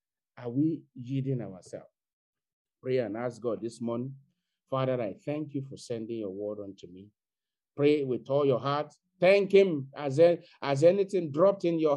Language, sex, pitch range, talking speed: English, male, 110-150 Hz, 165 wpm